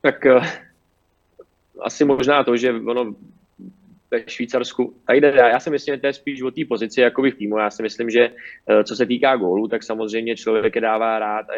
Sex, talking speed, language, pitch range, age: male, 205 wpm, Czech, 105-115 Hz, 20-39